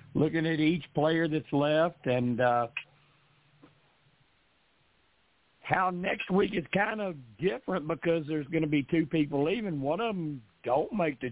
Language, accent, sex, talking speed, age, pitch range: English, American, male, 155 wpm, 50-69, 135-170 Hz